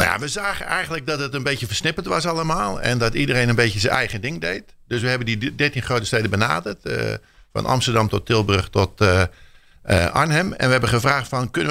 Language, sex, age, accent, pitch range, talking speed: Dutch, male, 50-69, Dutch, 100-130 Hz, 230 wpm